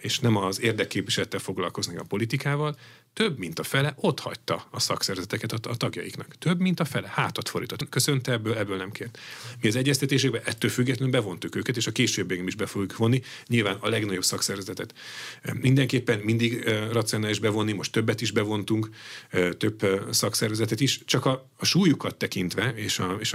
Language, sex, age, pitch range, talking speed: Hungarian, male, 40-59, 105-130 Hz, 170 wpm